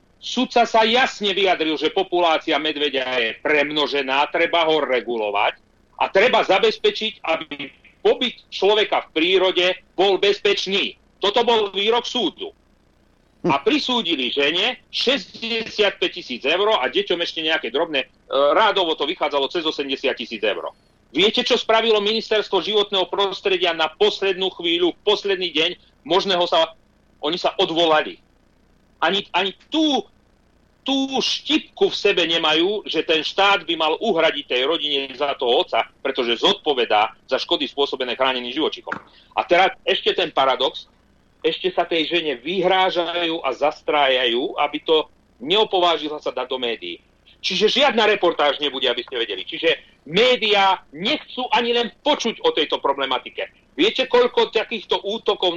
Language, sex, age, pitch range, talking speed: Slovak, male, 40-59, 160-250 Hz, 135 wpm